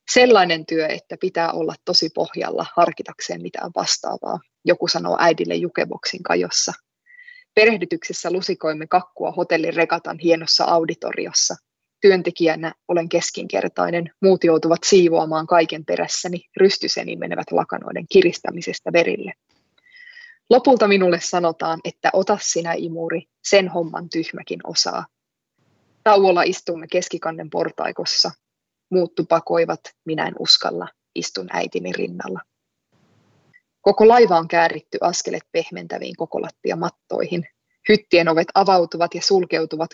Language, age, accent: Finnish, 20-39, native